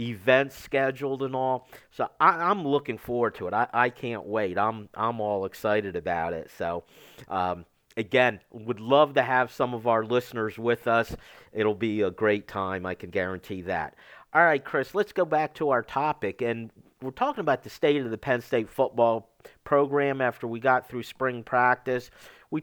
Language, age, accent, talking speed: English, 50-69, American, 185 wpm